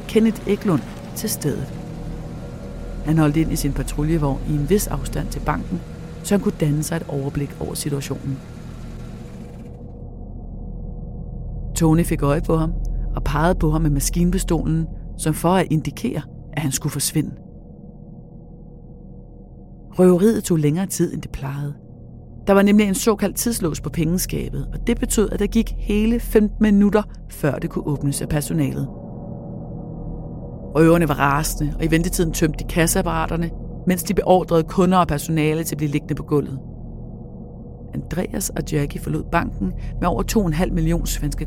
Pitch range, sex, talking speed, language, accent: 150-185 Hz, female, 150 wpm, Danish, native